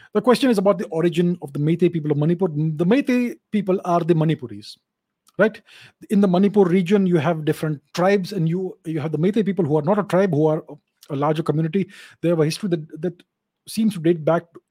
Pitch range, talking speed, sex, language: 155-195 Hz, 220 wpm, male, English